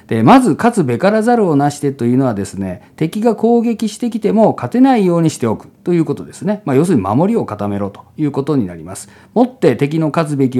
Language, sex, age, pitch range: Japanese, male, 50-69, 125-210 Hz